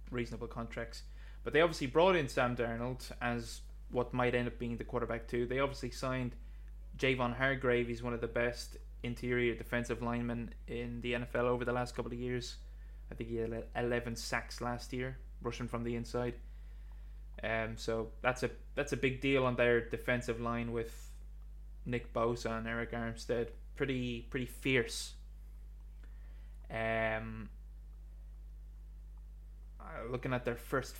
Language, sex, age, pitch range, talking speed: English, male, 20-39, 80-125 Hz, 155 wpm